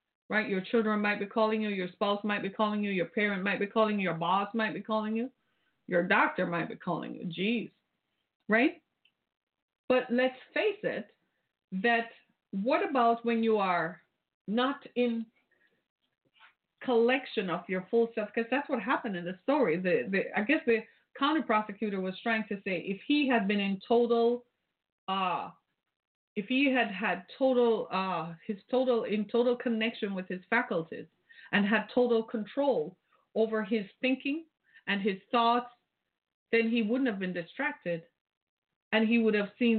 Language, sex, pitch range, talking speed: English, female, 200-245 Hz, 165 wpm